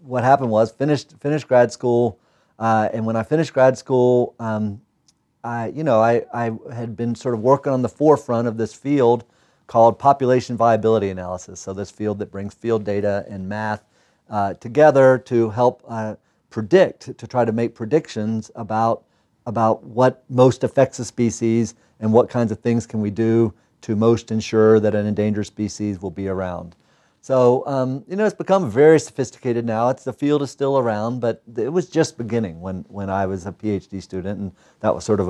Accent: American